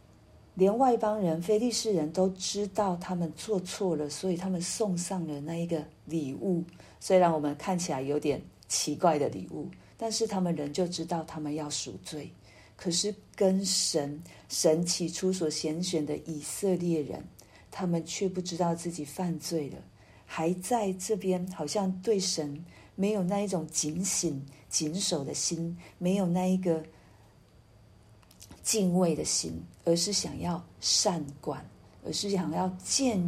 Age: 50-69